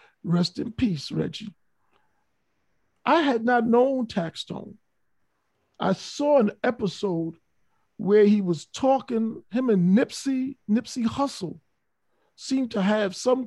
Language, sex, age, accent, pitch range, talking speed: English, male, 50-69, American, 175-230 Hz, 115 wpm